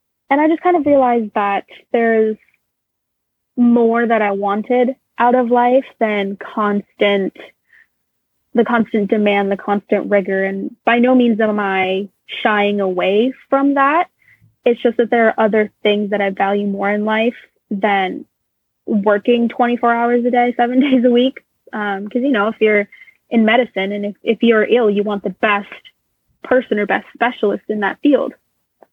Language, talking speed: English, 165 wpm